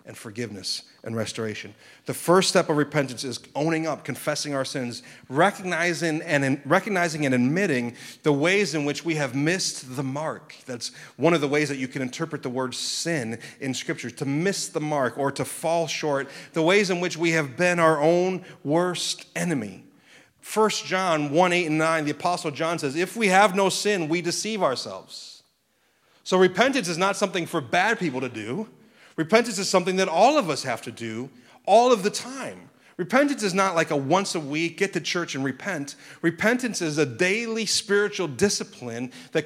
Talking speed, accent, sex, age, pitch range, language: 190 wpm, American, male, 30-49, 145-185 Hz, English